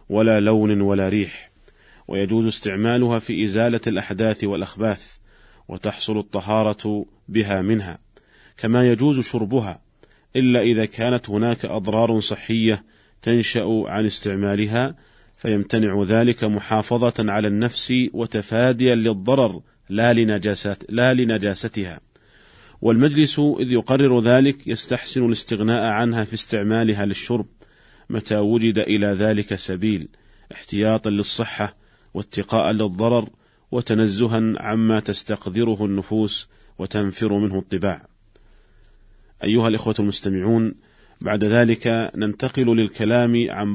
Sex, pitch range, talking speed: male, 105-120 Hz, 95 wpm